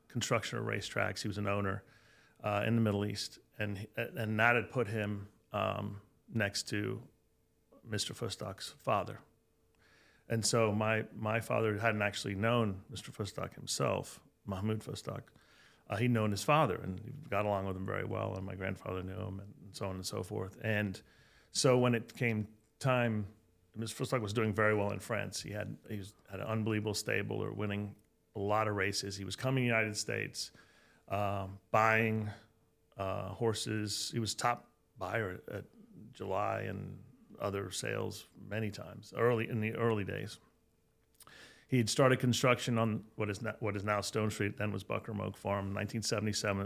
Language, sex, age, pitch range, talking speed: English, male, 40-59, 100-115 Hz, 175 wpm